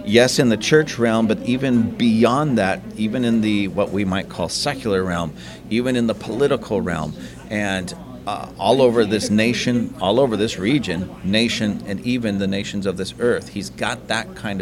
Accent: American